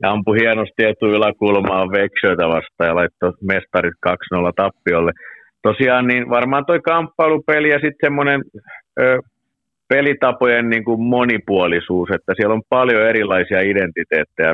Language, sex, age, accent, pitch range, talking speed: Finnish, male, 50-69, native, 85-110 Hz, 115 wpm